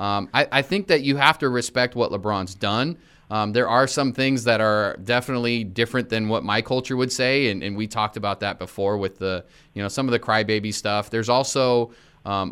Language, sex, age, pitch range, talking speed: English, male, 30-49, 100-125 Hz, 220 wpm